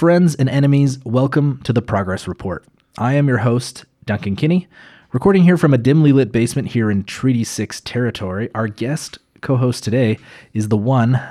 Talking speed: 180 wpm